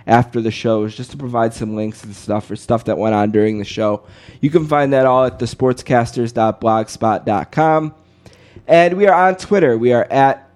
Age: 20-39